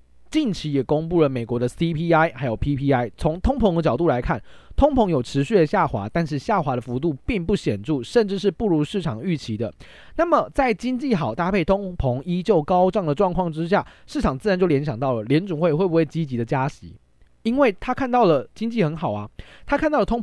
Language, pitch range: Chinese, 135-205 Hz